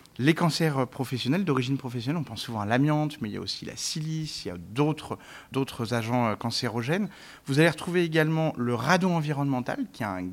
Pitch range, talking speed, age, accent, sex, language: 125-165 Hz, 200 wpm, 30-49, French, male, French